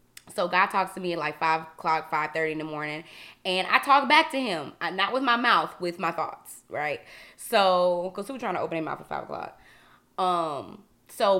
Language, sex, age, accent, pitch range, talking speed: English, female, 20-39, American, 175-255 Hz, 200 wpm